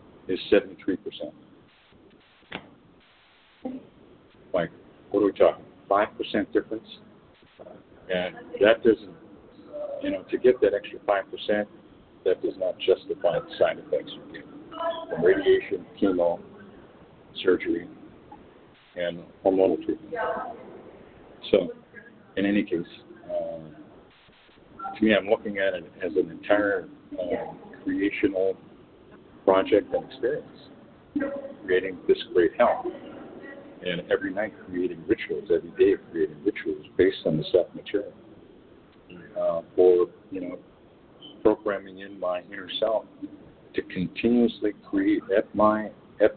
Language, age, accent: English, 50-69, American